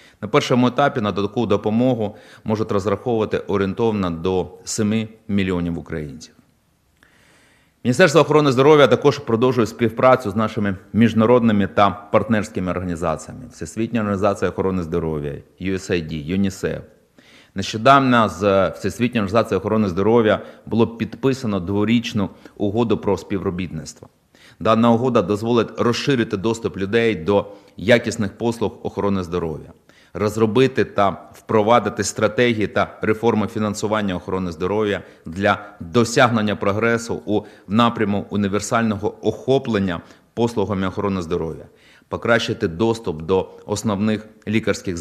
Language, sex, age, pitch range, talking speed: Ukrainian, male, 30-49, 95-115 Hz, 105 wpm